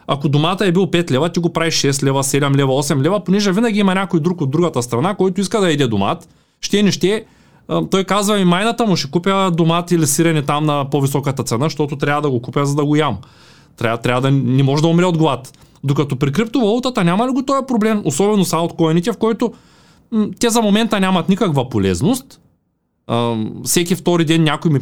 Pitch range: 125-175 Hz